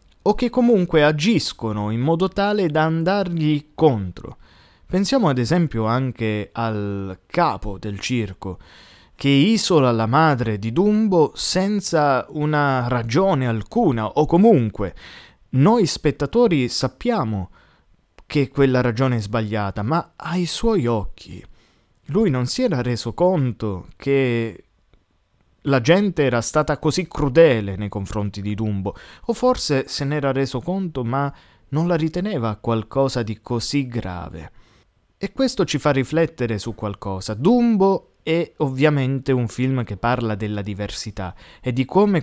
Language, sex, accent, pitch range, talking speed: Italian, male, native, 110-160 Hz, 130 wpm